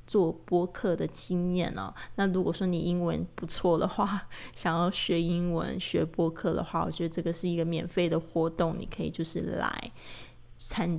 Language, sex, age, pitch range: Chinese, female, 20-39, 170-185 Hz